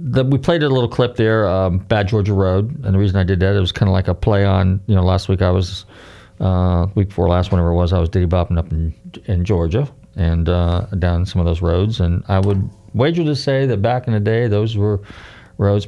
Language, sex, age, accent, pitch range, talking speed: English, male, 40-59, American, 95-120 Hz, 255 wpm